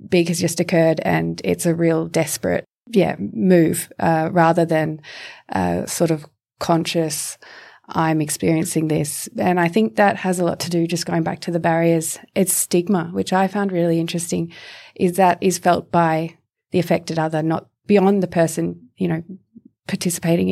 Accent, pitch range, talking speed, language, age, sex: Australian, 165-180 Hz, 170 wpm, English, 20-39, female